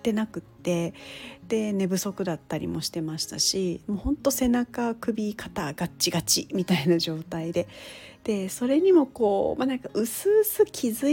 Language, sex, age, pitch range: Japanese, female, 40-59, 185-265 Hz